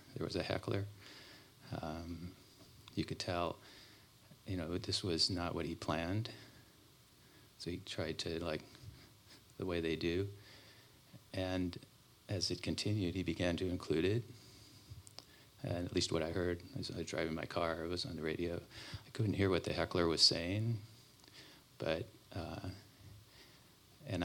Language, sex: English, male